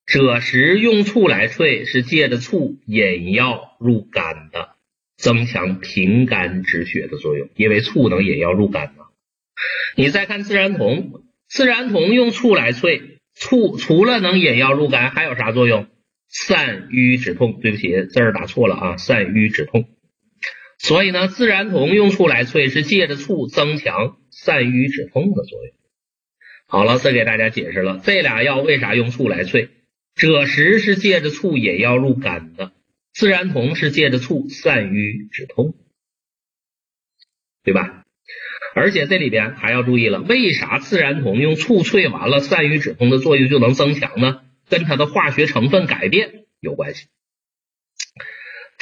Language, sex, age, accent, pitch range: Chinese, male, 50-69, native, 115-180 Hz